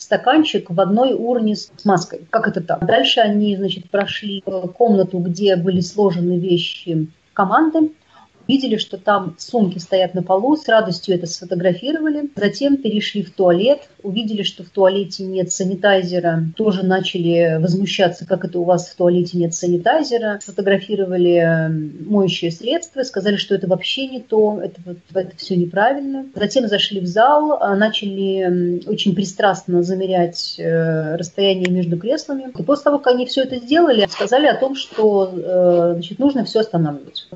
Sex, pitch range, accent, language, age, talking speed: female, 175-215 Hz, native, Russian, 30-49, 150 wpm